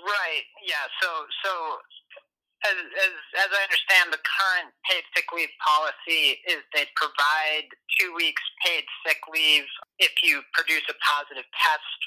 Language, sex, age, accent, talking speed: English, male, 30-49, American, 145 wpm